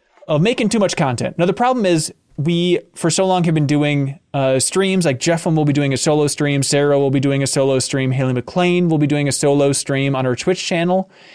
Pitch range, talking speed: 130-170 Hz, 240 wpm